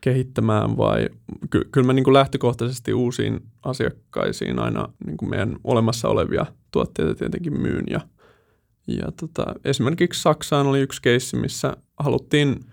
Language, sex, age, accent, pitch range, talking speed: Finnish, male, 20-39, native, 120-150 Hz, 135 wpm